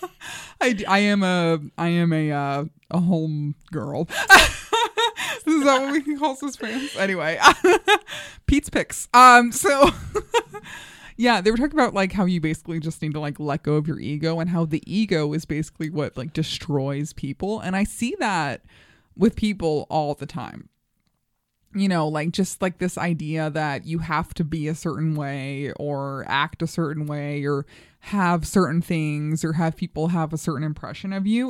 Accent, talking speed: American, 175 wpm